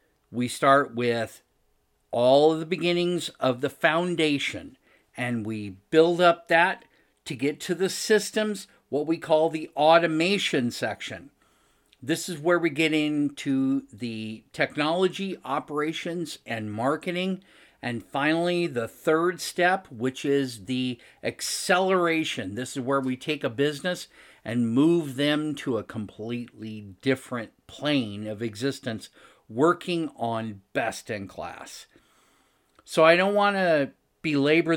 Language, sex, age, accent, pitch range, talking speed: English, male, 50-69, American, 125-165 Hz, 130 wpm